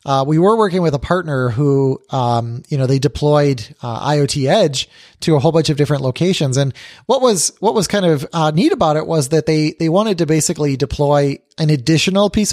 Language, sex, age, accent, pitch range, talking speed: English, male, 20-39, American, 130-175 Hz, 215 wpm